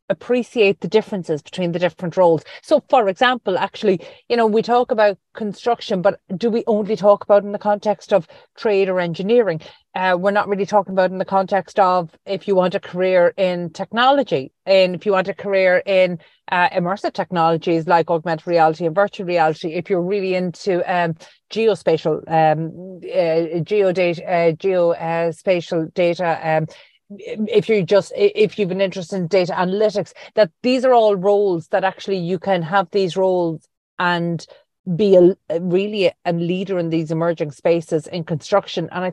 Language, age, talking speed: English, 30-49, 170 wpm